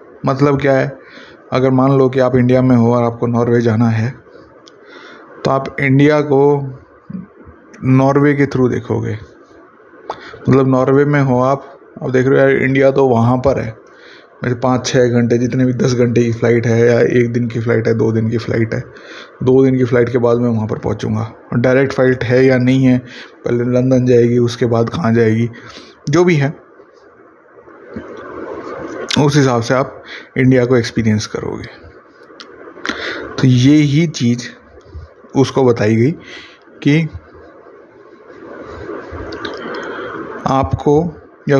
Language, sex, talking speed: Hindi, male, 150 wpm